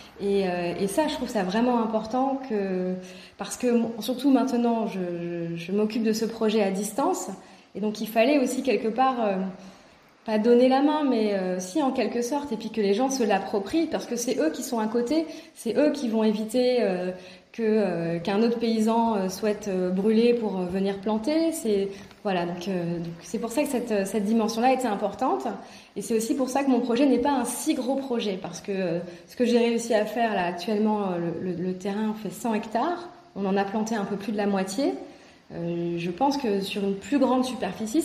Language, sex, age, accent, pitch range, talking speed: French, female, 20-39, French, 195-250 Hz, 210 wpm